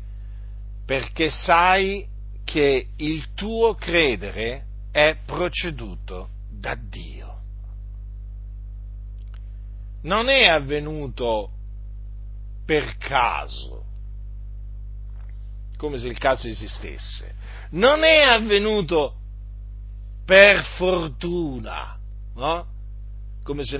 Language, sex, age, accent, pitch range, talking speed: Italian, male, 50-69, native, 100-140 Hz, 70 wpm